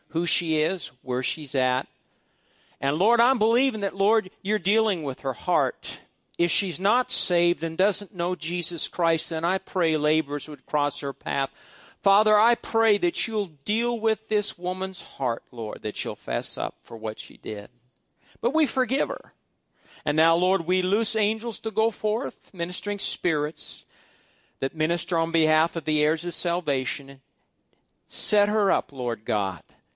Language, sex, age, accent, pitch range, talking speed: English, male, 50-69, American, 140-220 Hz, 165 wpm